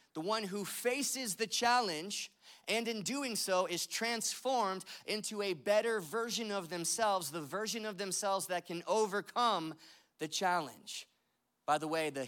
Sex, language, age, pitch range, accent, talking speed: male, English, 20-39, 155-220 Hz, American, 150 wpm